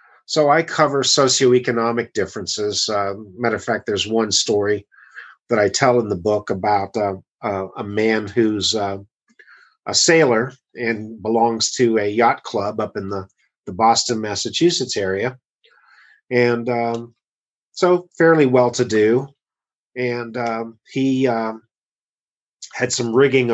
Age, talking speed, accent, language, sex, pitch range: 40-59, 135 wpm, American, English, male, 110-135 Hz